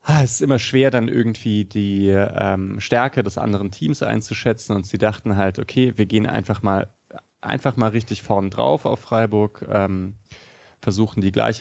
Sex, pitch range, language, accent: male, 100-120 Hz, German, German